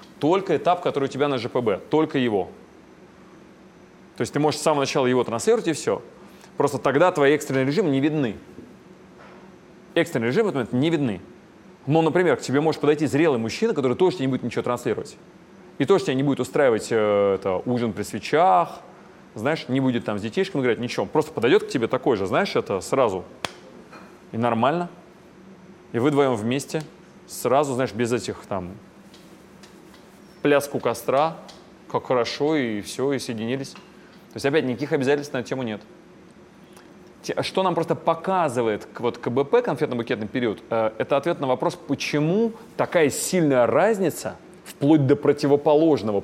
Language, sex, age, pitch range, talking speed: Russian, male, 30-49, 130-170 Hz, 155 wpm